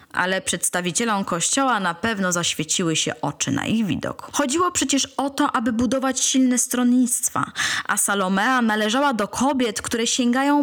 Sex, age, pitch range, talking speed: female, 20-39, 195-270 Hz, 145 wpm